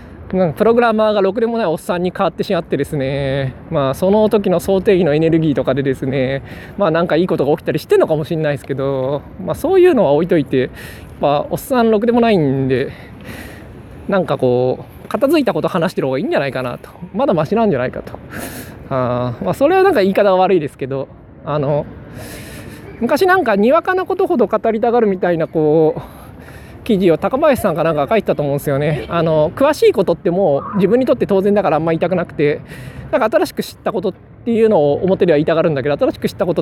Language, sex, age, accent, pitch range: Japanese, male, 20-39, native, 140-225 Hz